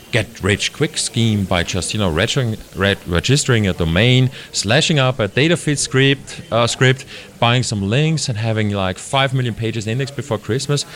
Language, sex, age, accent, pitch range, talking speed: English, male, 30-49, German, 95-130 Hz, 170 wpm